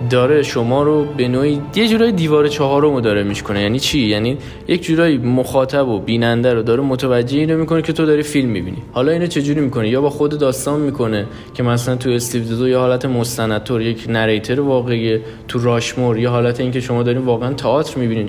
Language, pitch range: Persian, 115-145 Hz